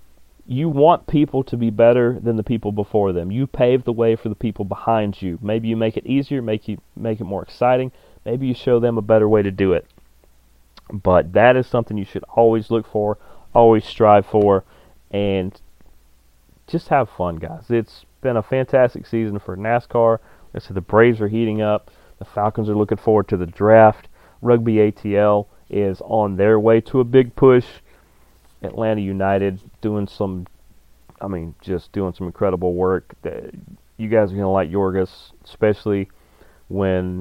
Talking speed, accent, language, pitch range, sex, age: 175 wpm, American, English, 95-115 Hz, male, 30-49